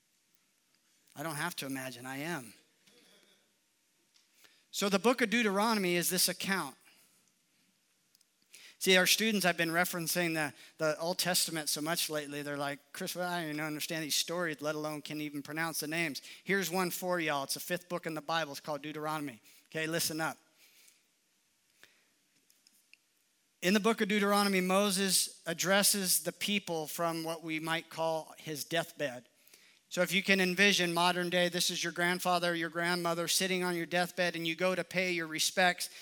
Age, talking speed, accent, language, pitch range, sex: 40-59, 170 wpm, American, English, 165-195 Hz, male